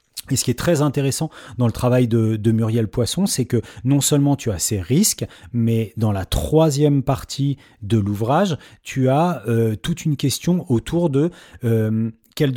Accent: French